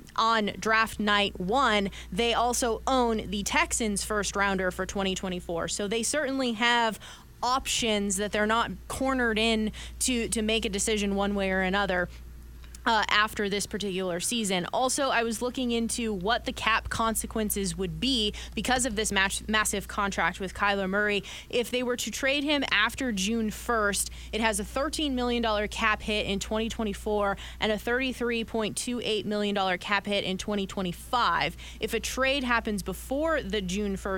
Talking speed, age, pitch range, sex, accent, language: 160 wpm, 20-39, 195-235 Hz, female, American, English